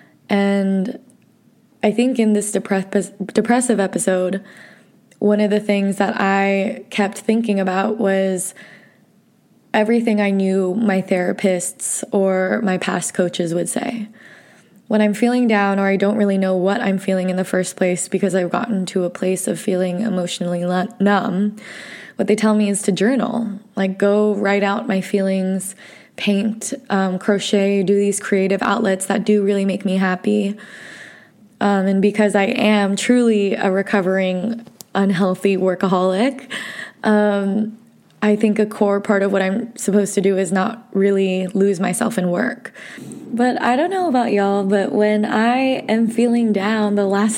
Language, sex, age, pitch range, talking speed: English, female, 20-39, 195-225 Hz, 155 wpm